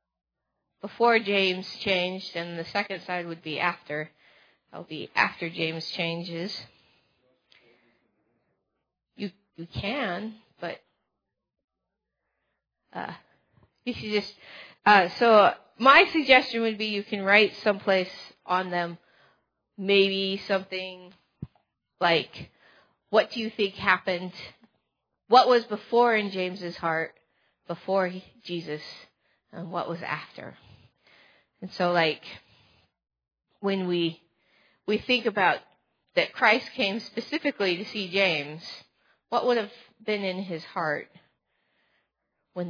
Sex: female